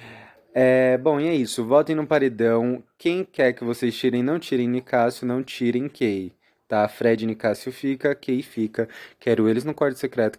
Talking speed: 185 wpm